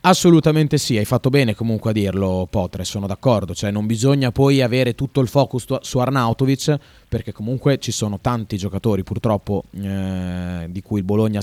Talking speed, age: 175 wpm, 20-39